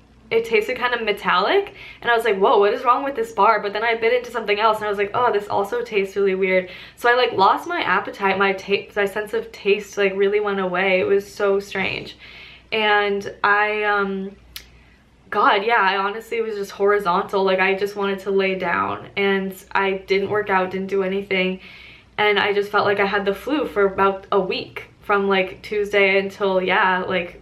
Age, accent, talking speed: 10-29, American, 210 wpm